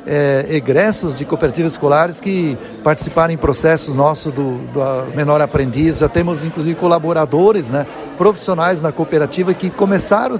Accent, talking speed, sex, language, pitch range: Brazilian, 140 wpm, male, Portuguese, 150-185 Hz